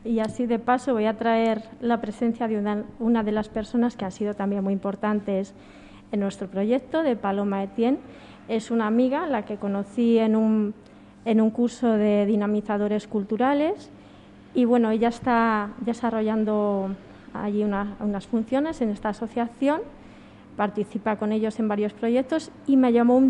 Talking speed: 155 wpm